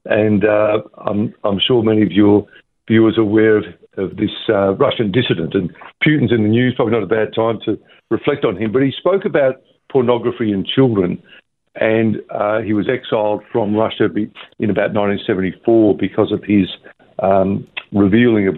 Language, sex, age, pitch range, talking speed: English, male, 60-79, 105-120 Hz, 175 wpm